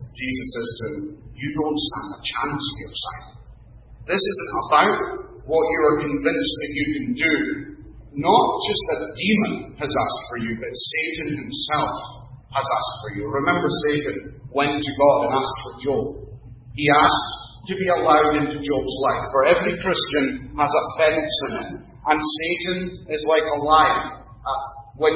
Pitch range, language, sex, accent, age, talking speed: 135-175 Hz, English, male, British, 40-59, 165 wpm